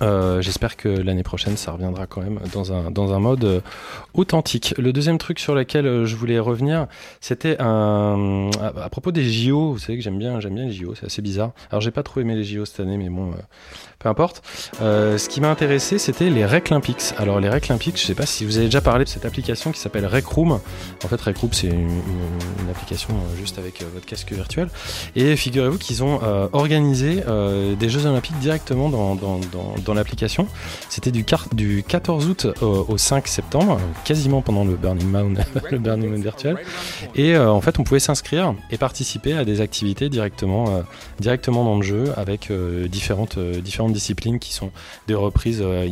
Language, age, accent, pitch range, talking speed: French, 20-39, French, 100-130 Hz, 210 wpm